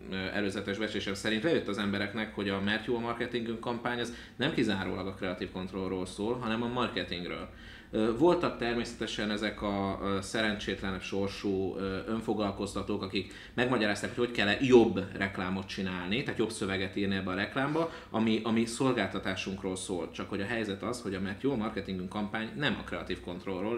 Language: Hungarian